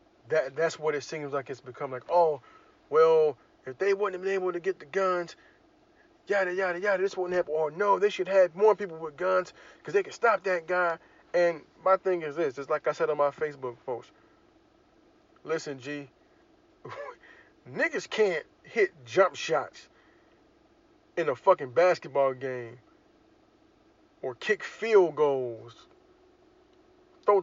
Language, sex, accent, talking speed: English, male, American, 155 wpm